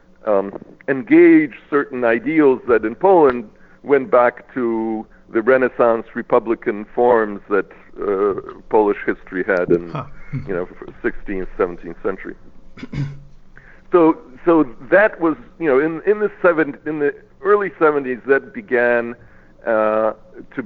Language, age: English, 60-79